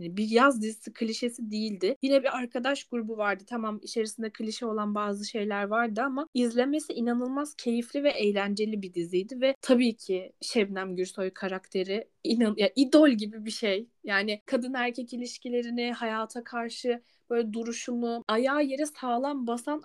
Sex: female